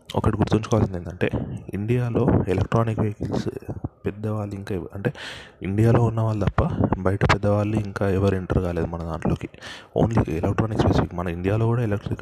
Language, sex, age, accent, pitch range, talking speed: Telugu, male, 20-39, native, 95-110 Hz, 135 wpm